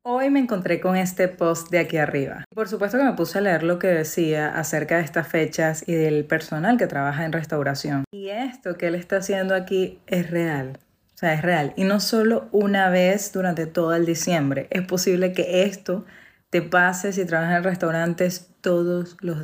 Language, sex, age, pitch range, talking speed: Spanish, female, 30-49, 160-195 Hz, 200 wpm